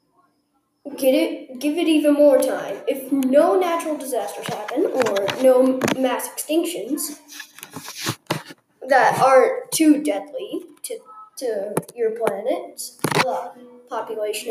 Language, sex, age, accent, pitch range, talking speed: English, female, 10-29, American, 260-340 Hz, 105 wpm